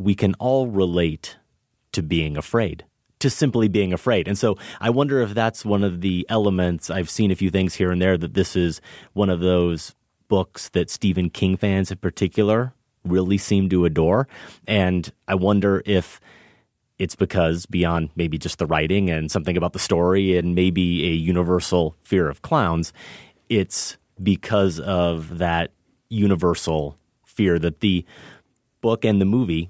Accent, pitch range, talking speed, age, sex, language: American, 85-105 Hz, 165 wpm, 30-49, male, English